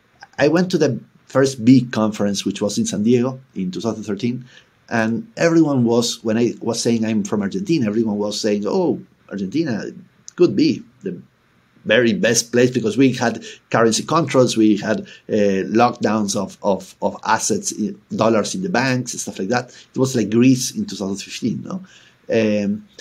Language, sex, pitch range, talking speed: English, male, 110-145 Hz, 170 wpm